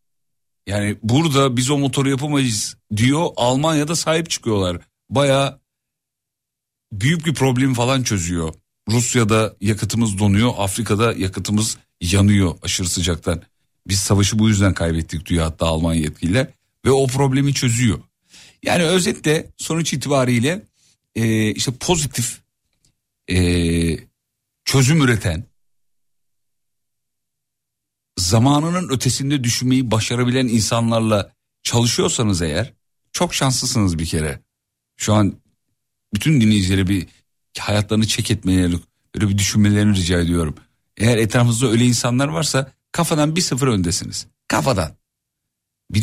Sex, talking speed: male, 105 wpm